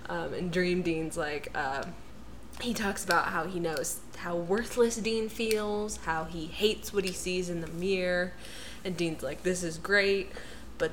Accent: American